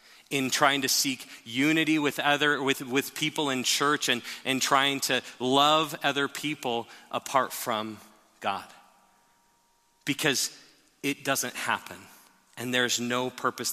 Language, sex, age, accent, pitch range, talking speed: English, male, 40-59, American, 115-140 Hz, 130 wpm